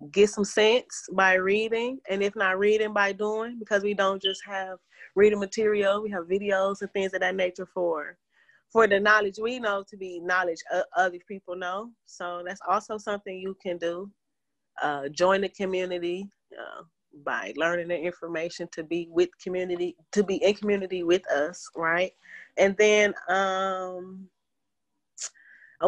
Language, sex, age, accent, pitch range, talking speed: English, female, 30-49, American, 180-220 Hz, 160 wpm